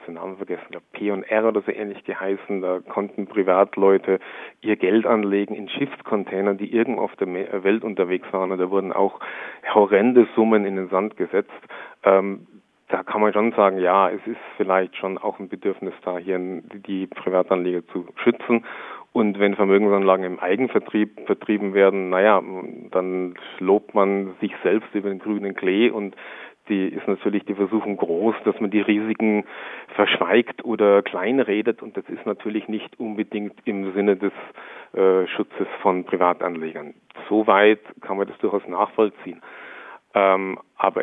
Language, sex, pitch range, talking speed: German, male, 95-105 Hz, 155 wpm